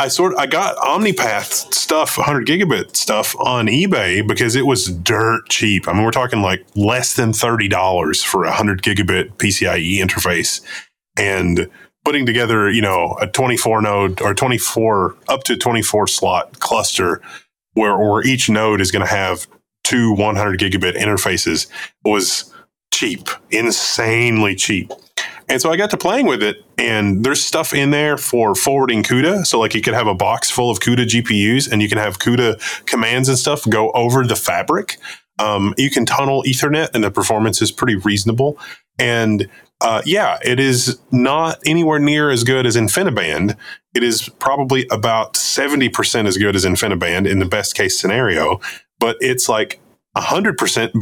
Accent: American